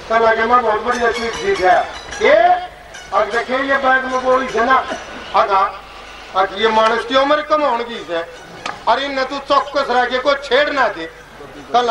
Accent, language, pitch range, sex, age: native, Hindi, 215-265 Hz, male, 50-69